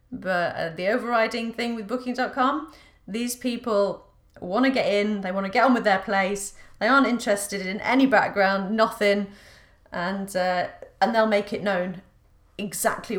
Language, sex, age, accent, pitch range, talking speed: English, female, 30-49, British, 180-230 Hz, 155 wpm